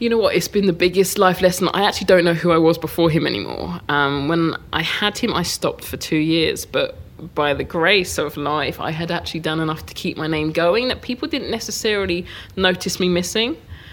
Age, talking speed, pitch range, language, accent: 20-39, 225 wpm, 155-185 Hz, English, British